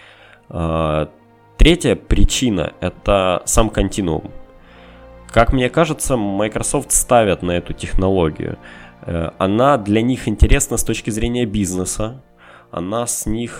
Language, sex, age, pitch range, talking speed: Russian, male, 20-39, 90-115 Hz, 95 wpm